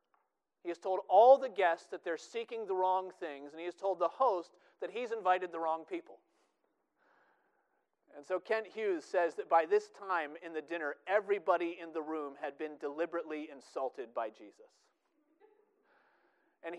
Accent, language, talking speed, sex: American, English, 170 wpm, male